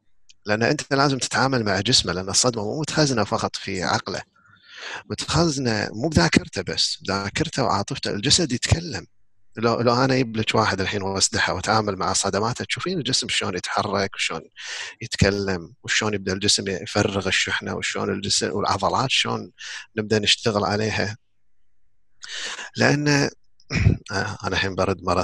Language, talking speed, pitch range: English, 130 wpm, 100-120 Hz